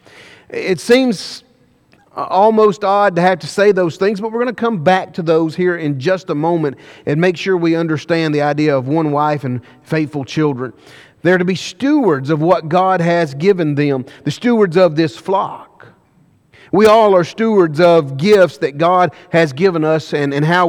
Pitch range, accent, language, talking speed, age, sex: 145-190 Hz, American, English, 190 wpm, 40-59, male